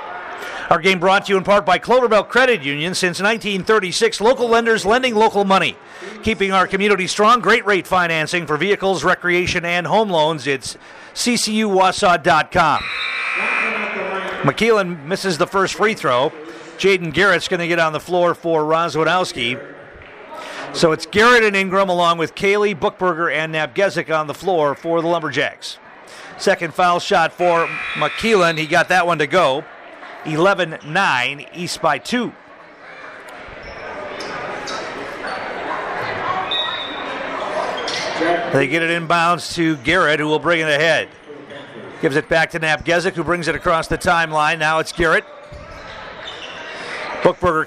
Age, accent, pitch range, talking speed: 50-69, American, 160-195 Hz, 135 wpm